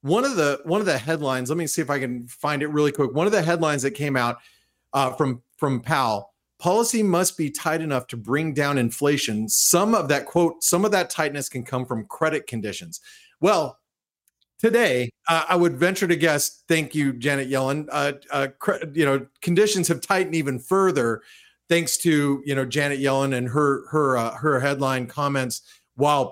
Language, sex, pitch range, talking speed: English, male, 135-175 Hz, 195 wpm